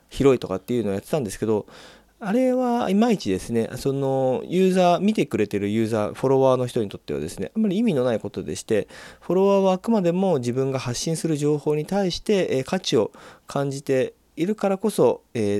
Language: Japanese